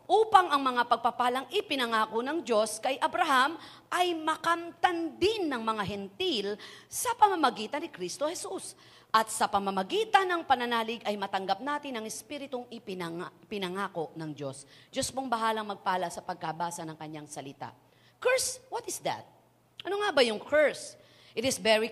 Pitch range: 215-285 Hz